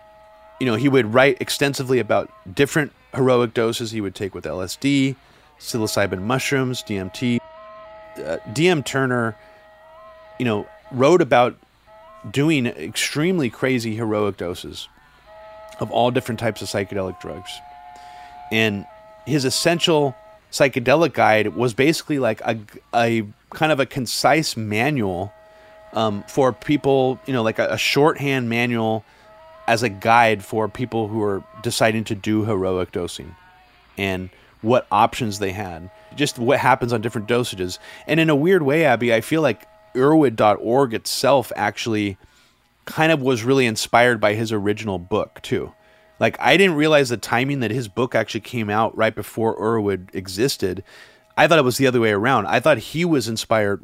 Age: 30-49